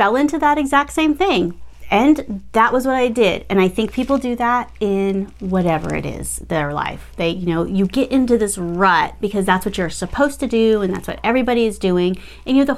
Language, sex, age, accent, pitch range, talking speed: English, female, 30-49, American, 190-275 Hz, 230 wpm